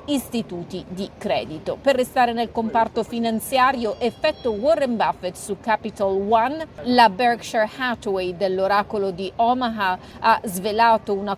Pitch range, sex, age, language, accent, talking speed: 195-240 Hz, female, 40-59, Italian, native, 120 wpm